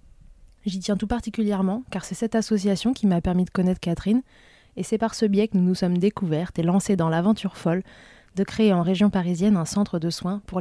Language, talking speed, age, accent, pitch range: French, 220 wpm, 20-39, French, 170-200 Hz